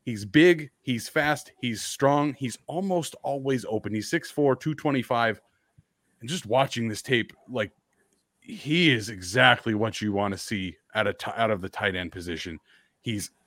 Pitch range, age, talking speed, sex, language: 115-160 Hz, 30-49, 165 wpm, male, English